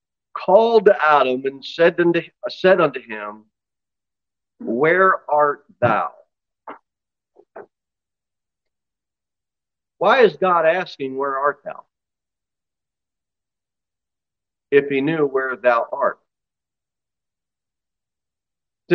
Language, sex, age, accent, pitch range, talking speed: English, male, 40-59, American, 135-200 Hz, 75 wpm